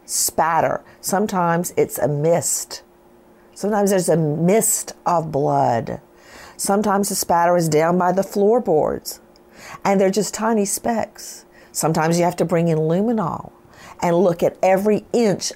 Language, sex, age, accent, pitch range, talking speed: English, female, 50-69, American, 155-195 Hz, 140 wpm